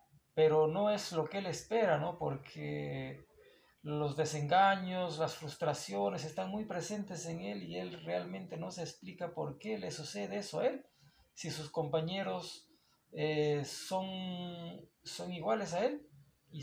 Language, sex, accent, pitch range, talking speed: Spanish, male, Mexican, 140-170 Hz, 150 wpm